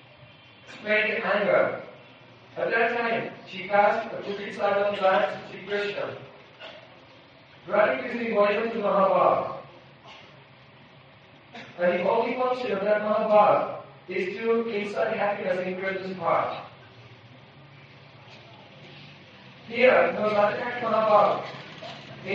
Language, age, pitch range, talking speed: English, 50-69, 185-220 Hz, 100 wpm